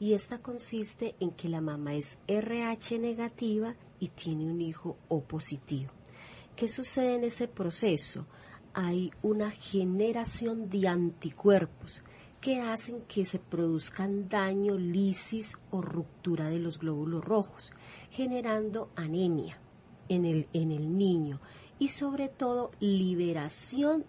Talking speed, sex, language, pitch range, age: 120 wpm, female, Spanish, 160-215 Hz, 40-59